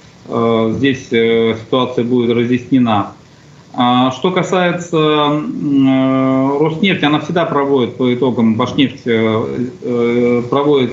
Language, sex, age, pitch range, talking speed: Russian, male, 40-59, 120-145 Hz, 75 wpm